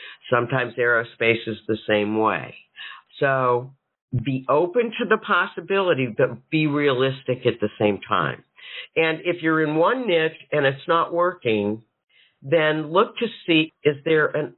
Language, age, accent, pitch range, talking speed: English, 50-69, American, 120-180 Hz, 150 wpm